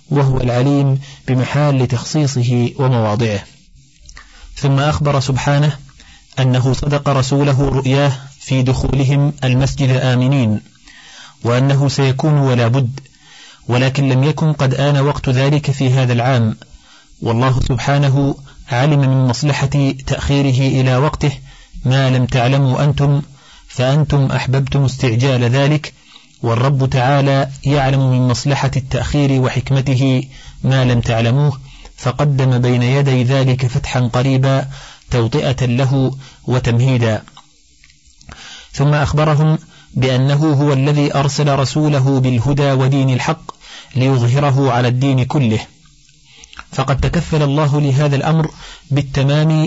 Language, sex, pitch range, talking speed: Arabic, male, 130-145 Hz, 105 wpm